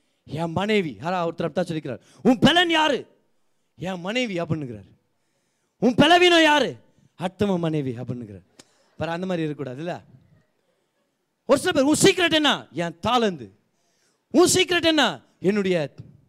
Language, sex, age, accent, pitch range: Tamil, male, 30-49, native, 175-270 Hz